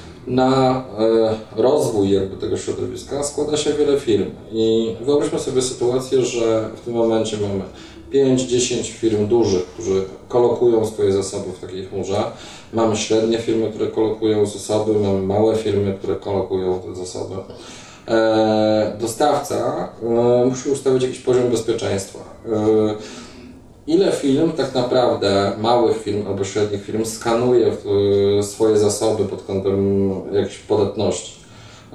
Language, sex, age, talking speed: Polish, male, 20-39, 120 wpm